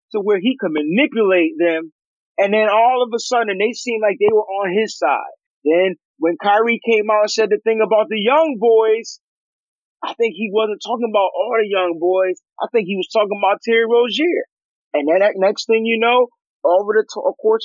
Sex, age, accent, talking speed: male, 30-49, American, 215 wpm